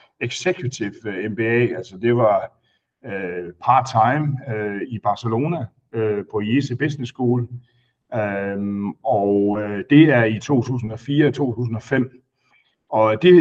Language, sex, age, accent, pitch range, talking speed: Danish, male, 60-79, native, 115-155 Hz, 105 wpm